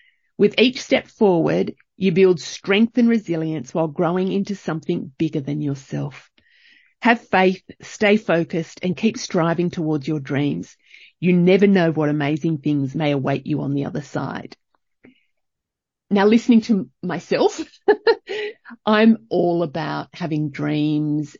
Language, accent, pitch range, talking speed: English, Australian, 150-210 Hz, 135 wpm